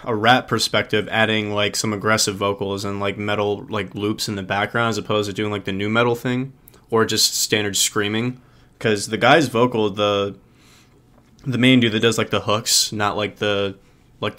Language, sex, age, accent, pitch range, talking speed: English, male, 20-39, American, 105-115 Hz, 190 wpm